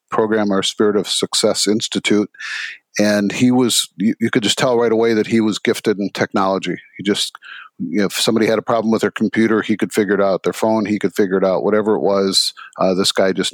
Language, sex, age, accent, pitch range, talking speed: English, male, 50-69, American, 100-115 Hz, 235 wpm